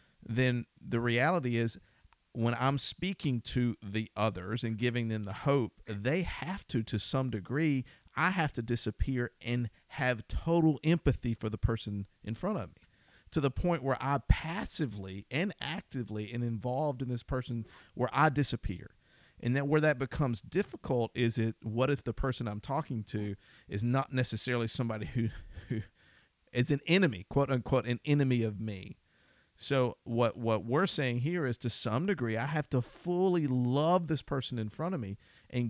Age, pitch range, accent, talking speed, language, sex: 50-69, 110-135 Hz, American, 175 wpm, English, male